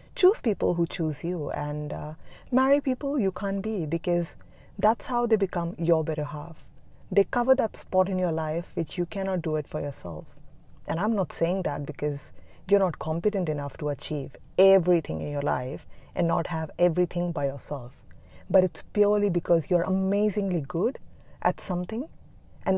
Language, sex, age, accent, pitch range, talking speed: English, female, 30-49, Indian, 155-200 Hz, 175 wpm